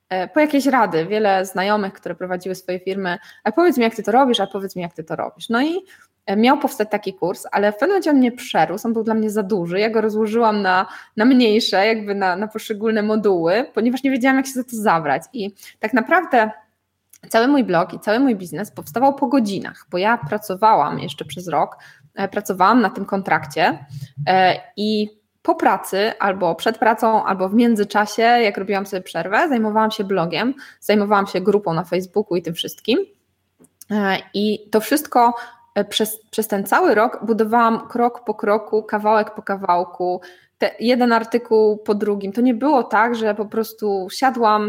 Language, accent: Polish, native